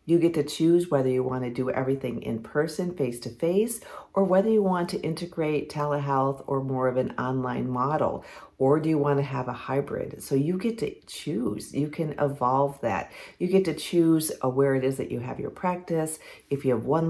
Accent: American